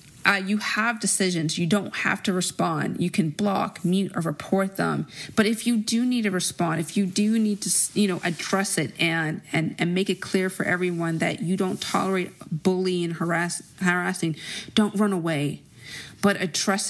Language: English